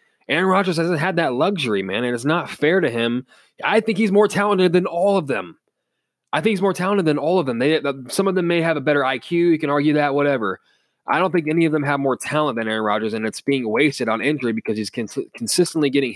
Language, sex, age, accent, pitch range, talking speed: English, male, 20-39, American, 120-155 Hz, 255 wpm